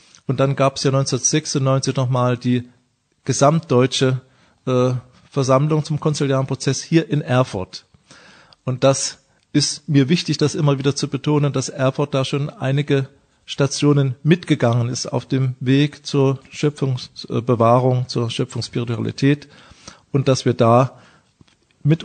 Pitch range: 125-145 Hz